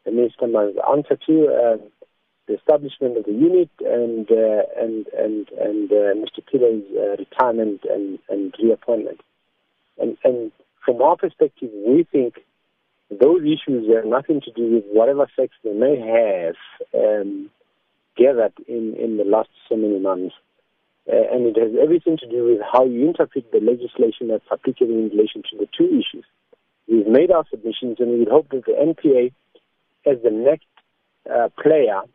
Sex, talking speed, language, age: male, 160 wpm, English, 50-69